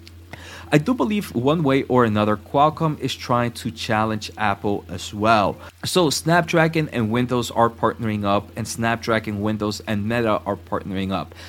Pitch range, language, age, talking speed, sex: 100-120 Hz, English, 20-39, 155 wpm, male